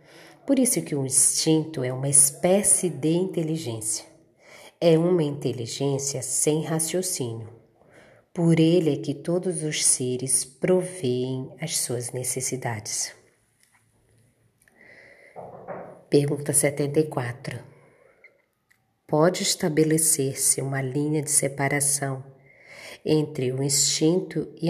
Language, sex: Portuguese, female